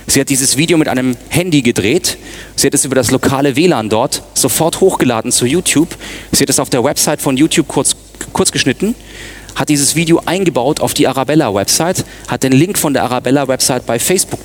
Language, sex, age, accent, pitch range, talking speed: German, male, 30-49, German, 130-170 Hz, 190 wpm